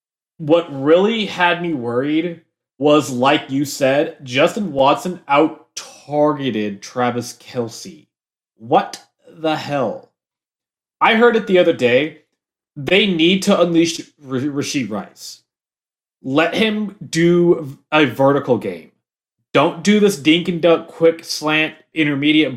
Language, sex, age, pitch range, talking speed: English, male, 20-39, 135-170 Hz, 115 wpm